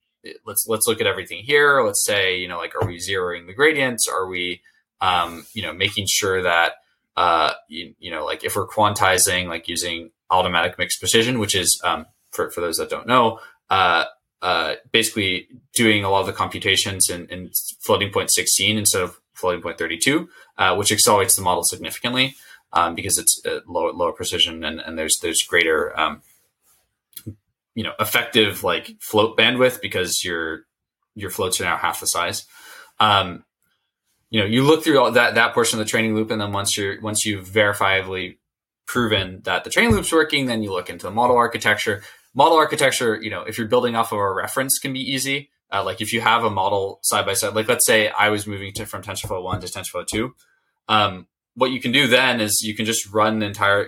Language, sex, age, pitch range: English, male, 20-39, 100-130 Hz